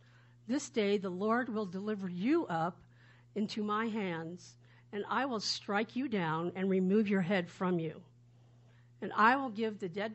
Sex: female